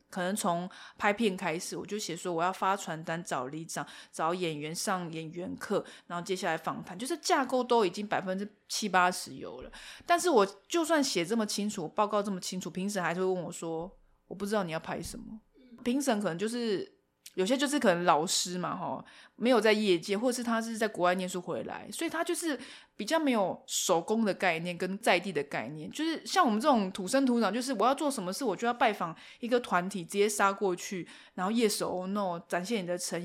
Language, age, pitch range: Chinese, 20-39, 180-245 Hz